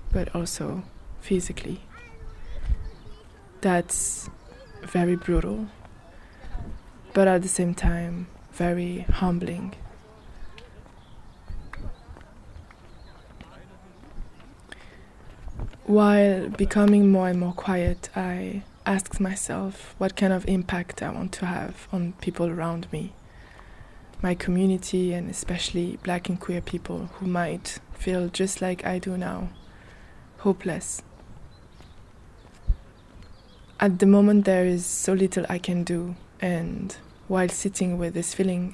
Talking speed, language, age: 105 wpm, English, 20-39